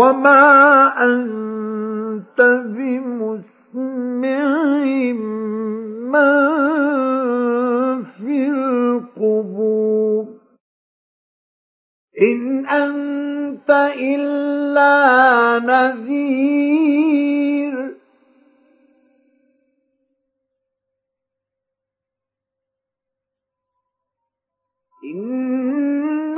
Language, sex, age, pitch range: Arabic, male, 50-69, 255-295 Hz